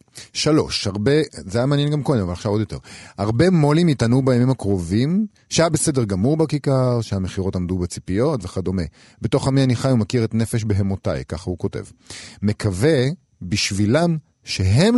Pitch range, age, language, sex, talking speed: 95-130 Hz, 40-59, Hebrew, male, 150 wpm